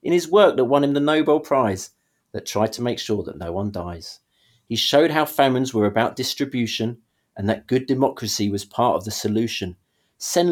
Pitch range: 105-165 Hz